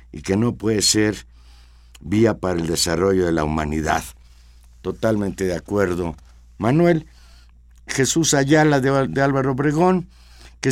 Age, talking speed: 60-79, 125 wpm